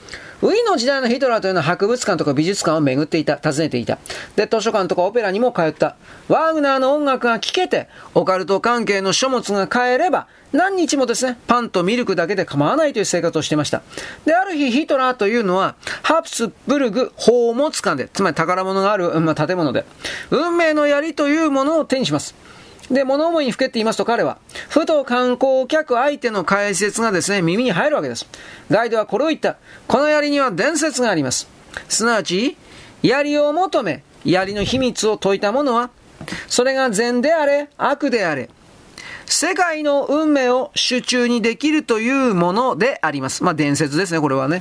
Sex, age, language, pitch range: male, 40-59, Japanese, 195-285 Hz